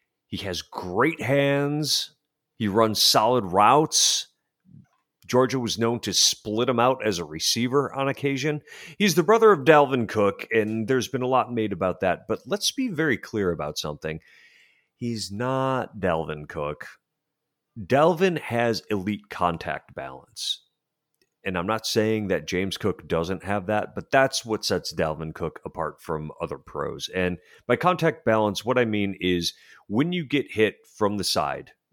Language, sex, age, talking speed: English, male, 40-59, 160 wpm